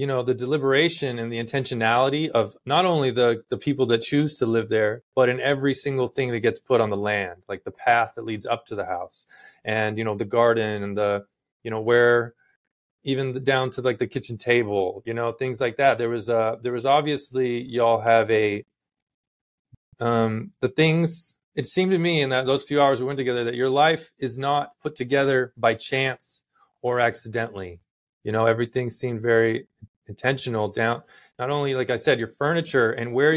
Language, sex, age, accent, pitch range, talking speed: English, male, 30-49, American, 115-140 Hz, 205 wpm